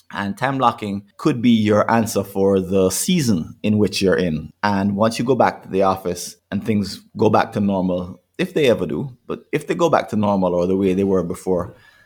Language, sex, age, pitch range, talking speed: English, male, 30-49, 95-120 Hz, 225 wpm